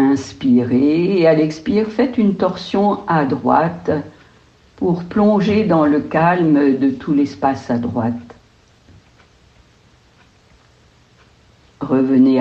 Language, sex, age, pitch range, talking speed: French, female, 60-79, 120-170 Hz, 95 wpm